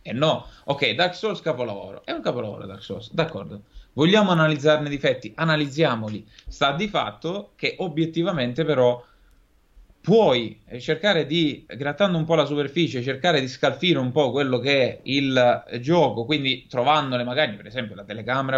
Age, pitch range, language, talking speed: 20-39, 125-165 Hz, Italian, 160 wpm